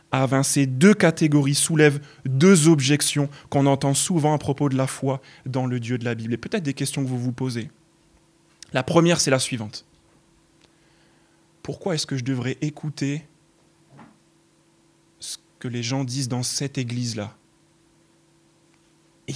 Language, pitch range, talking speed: French, 135-165 Hz, 150 wpm